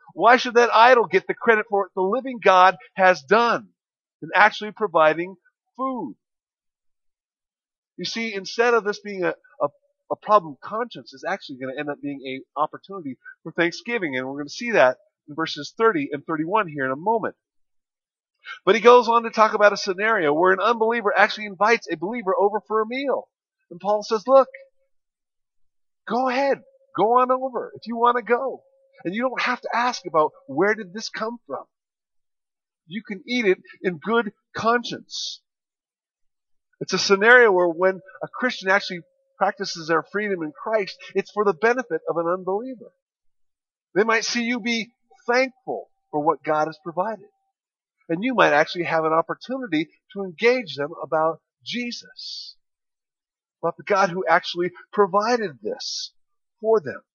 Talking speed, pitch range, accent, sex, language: 170 wpm, 180-245 Hz, American, male, English